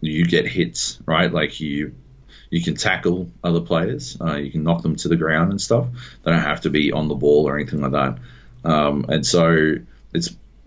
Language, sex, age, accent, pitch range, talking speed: English, male, 30-49, Australian, 70-85 Hz, 210 wpm